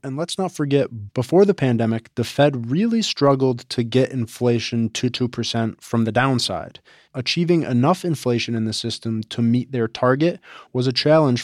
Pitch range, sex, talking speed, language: 115-140 Hz, male, 175 wpm, English